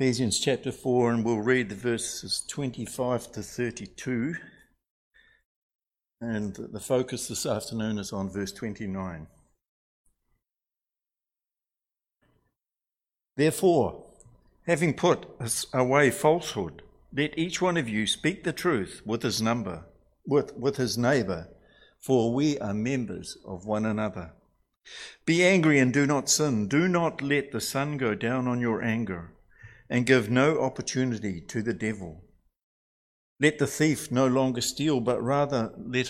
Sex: male